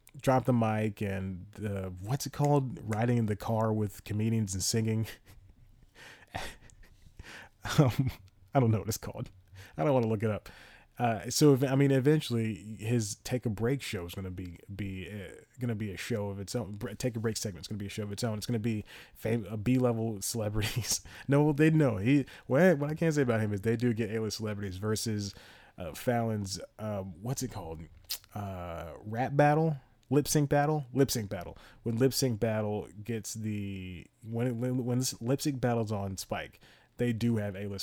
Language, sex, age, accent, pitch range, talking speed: English, male, 30-49, American, 100-125 Hz, 205 wpm